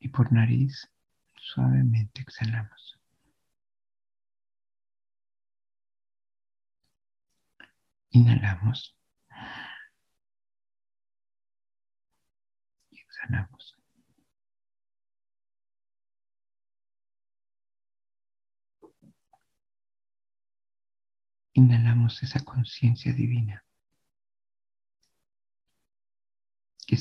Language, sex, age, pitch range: Spanish, male, 60-79, 100-115 Hz